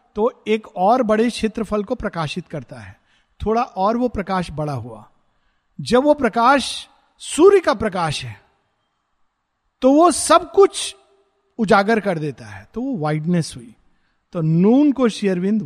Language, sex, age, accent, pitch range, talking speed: Hindi, male, 50-69, native, 155-225 Hz, 145 wpm